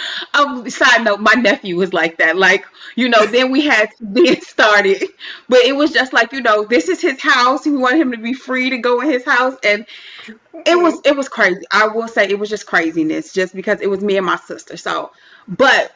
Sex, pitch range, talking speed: female, 200-265 Hz, 235 wpm